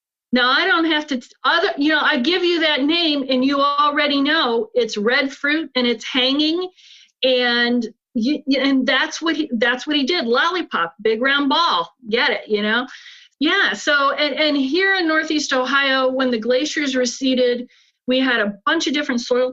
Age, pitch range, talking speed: 40-59, 220-285 Hz, 185 wpm